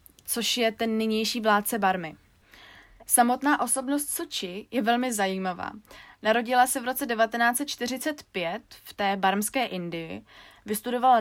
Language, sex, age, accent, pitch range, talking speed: Czech, female, 20-39, native, 195-240 Hz, 120 wpm